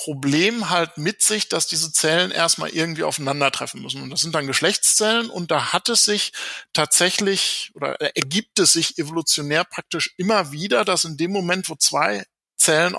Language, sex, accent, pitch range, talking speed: German, male, German, 140-185 Hz, 170 wpm